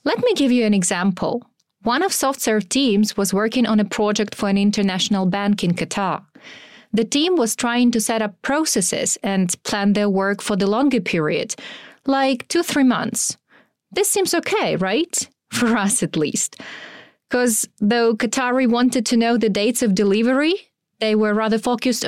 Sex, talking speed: female, 170 wpm